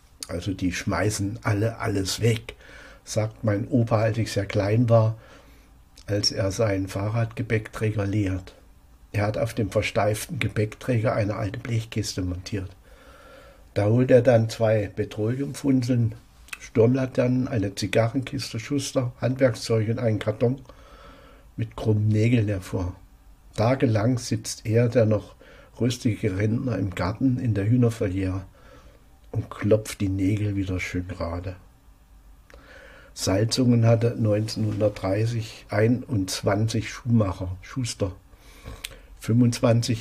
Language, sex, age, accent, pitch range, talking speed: German, male, 60-79, German, 100-120 Hz, 110 wpm